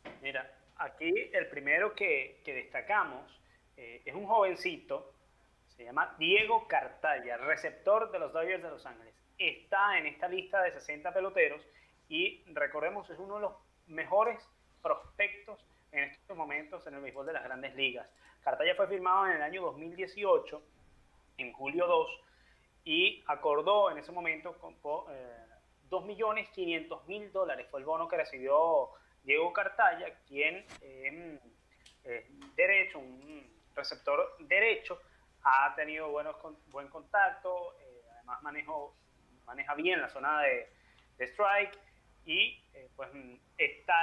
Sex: male